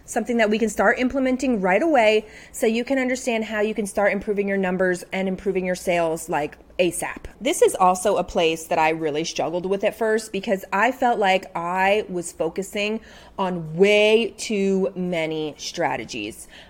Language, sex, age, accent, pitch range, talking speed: English, female, 30-49, American, 175-220 Hz, 175 wpm